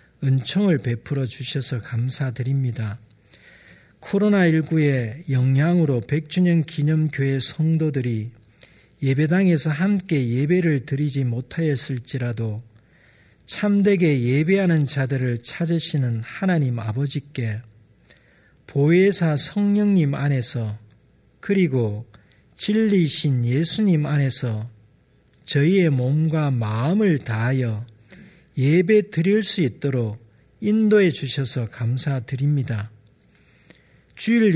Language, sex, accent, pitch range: Korean, male, native, 120-165 Hz